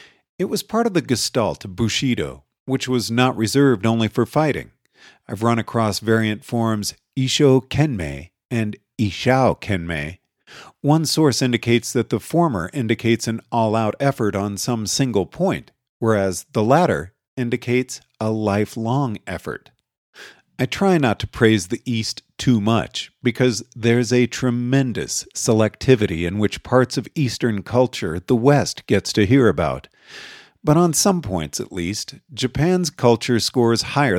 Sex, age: male, 50-69